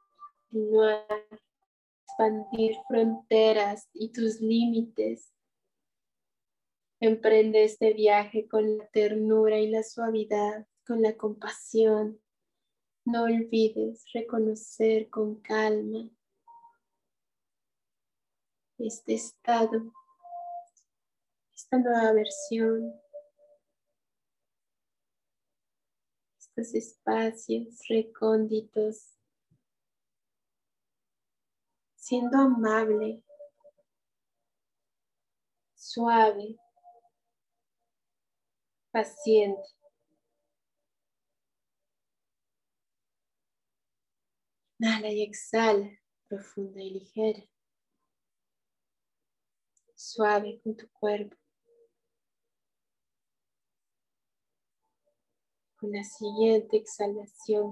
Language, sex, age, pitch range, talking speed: Spanish, female, 20-39, 215-235 Hz, 50 wpm